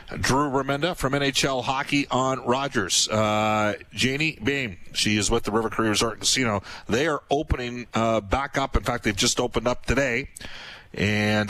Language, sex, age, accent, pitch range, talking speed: English, male, 40-59, American, 110-130 Hz, 165 wpm